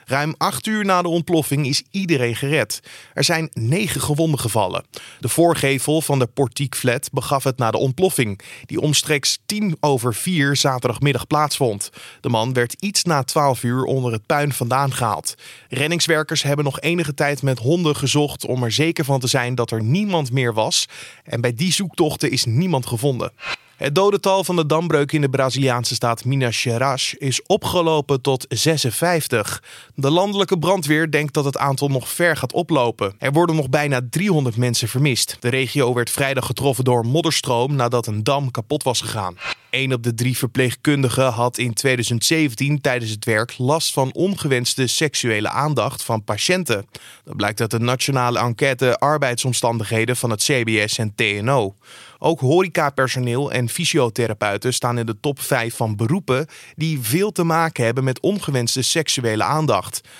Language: Dutch